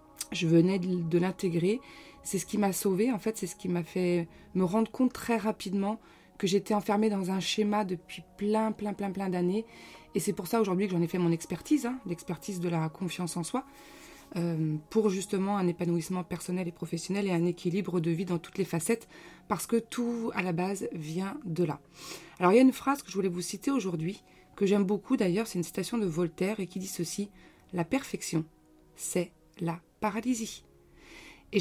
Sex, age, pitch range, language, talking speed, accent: female, 20-39, 170-220 Hz, French, 205 wpm, French